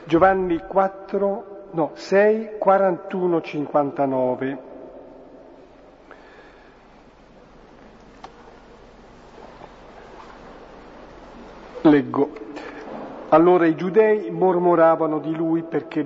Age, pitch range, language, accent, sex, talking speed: 50-69, 150-190 Hz, Italian, native, male, 50 wpm